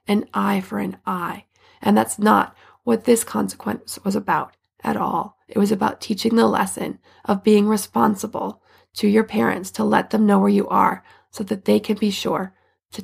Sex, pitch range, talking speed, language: female, 210-260 Hz, 190 wpm, English